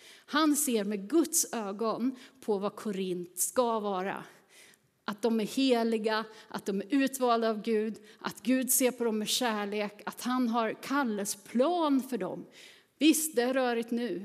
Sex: female